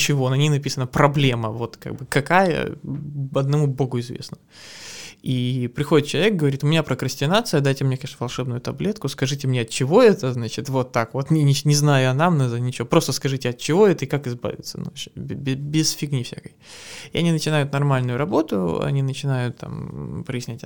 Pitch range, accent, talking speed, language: 120-145 Hz, native, 175 wpm, Russian